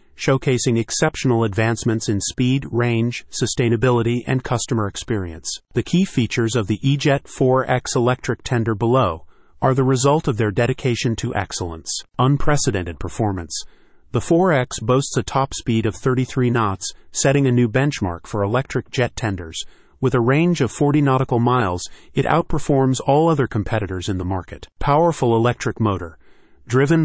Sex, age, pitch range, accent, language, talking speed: male, 40-59, 110-135 Hz, American, English, 145 wpm